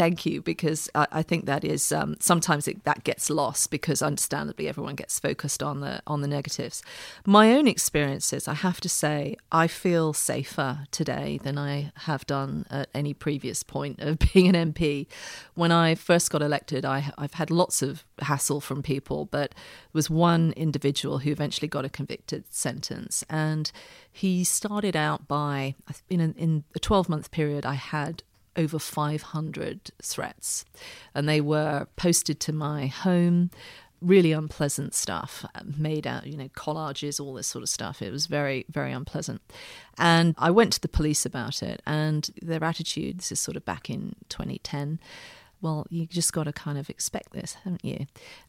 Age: 40-59